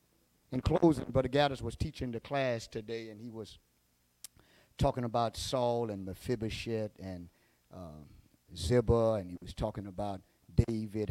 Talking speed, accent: 140 wpm, American